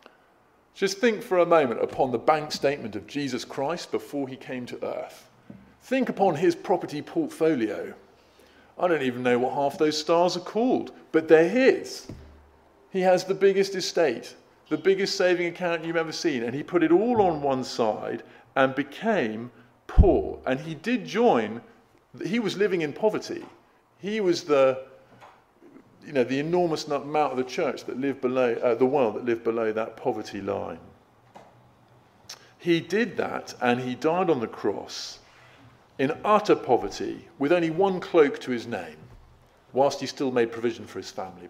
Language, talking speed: English, 170 wpm